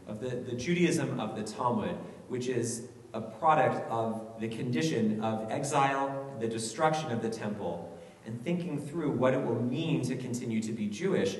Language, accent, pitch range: English, American, 115-150 Hz